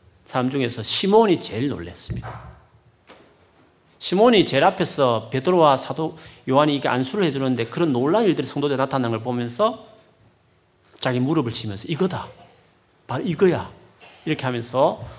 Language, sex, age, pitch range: Korean, male, 40-59, 110-175 Hz